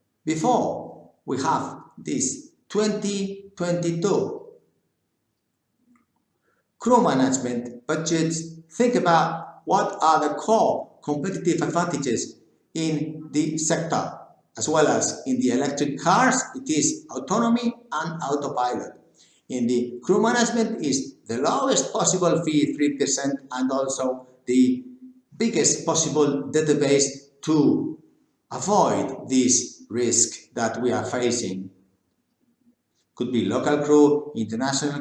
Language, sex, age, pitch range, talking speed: English, male, 60-79, 130-190 Hz, 105 wpm